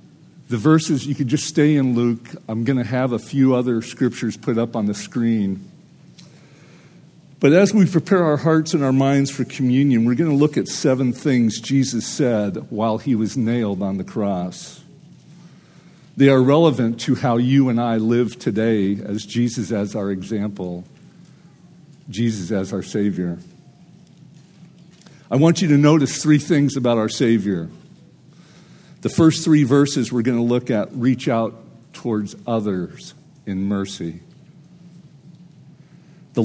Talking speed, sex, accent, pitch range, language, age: 155 wpm, male, American, 115-160 Hz, English, 50-69